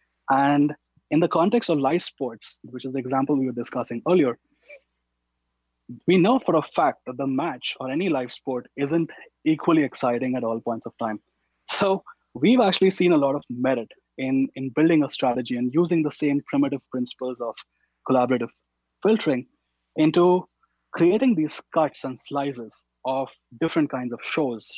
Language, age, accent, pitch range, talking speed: English, 20-39, Indian, 125-155 Hz, 165 wpm